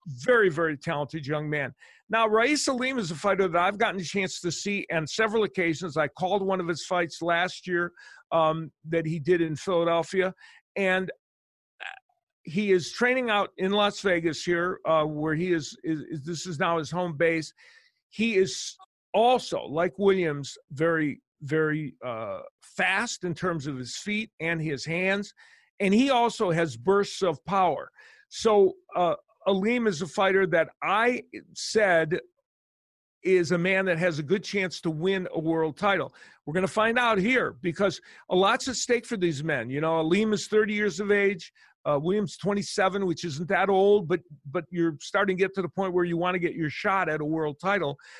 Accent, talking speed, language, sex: American, 190 wpm, English, male